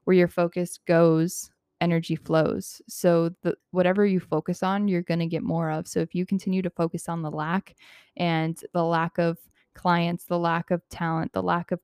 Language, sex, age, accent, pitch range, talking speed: English, female, 20-39, American, 165-180 Hz, 195 wpm